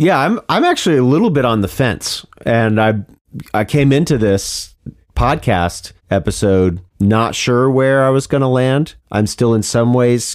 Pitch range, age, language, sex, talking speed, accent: 100-125 Hz, 40-59, English, male, 175 wpm, American